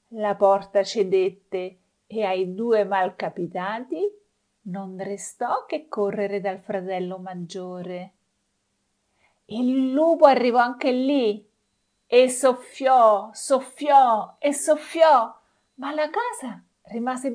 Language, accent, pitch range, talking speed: Italian, native, 190-245 Hz, 95 wpm